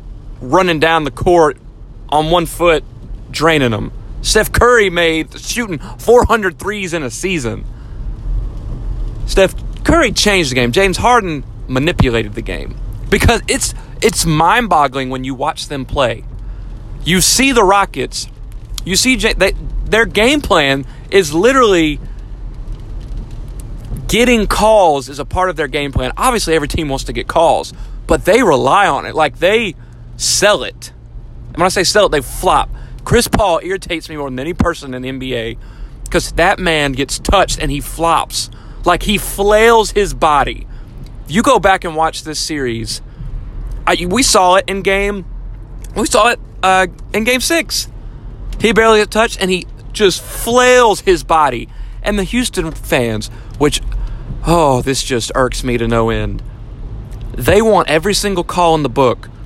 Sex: male